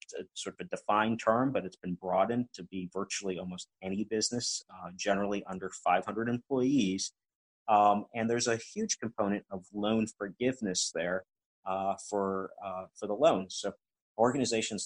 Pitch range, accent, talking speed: 95-110 Hz, American, 160 wpm